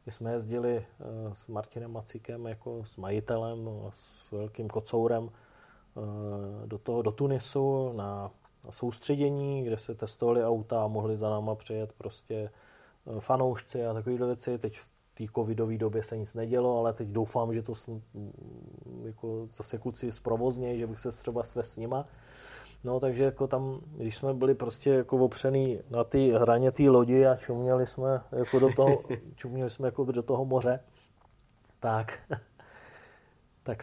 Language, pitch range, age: Czech, 110-130 Hz, 30-49